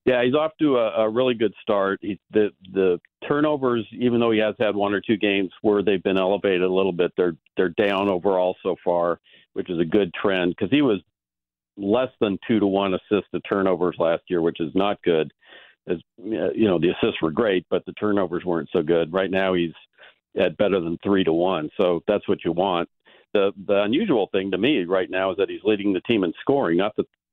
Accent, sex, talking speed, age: American, male, 220 wpm, 50-69